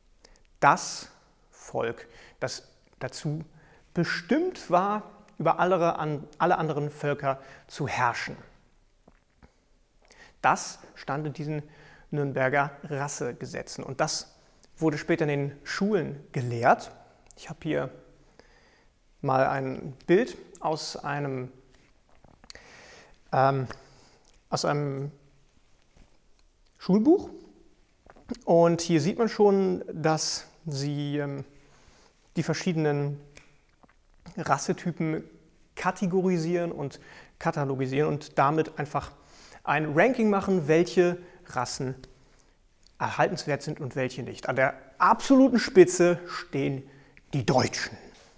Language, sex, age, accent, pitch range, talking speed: German, male, 30-49, German, 140-180 Hz, 90 wpm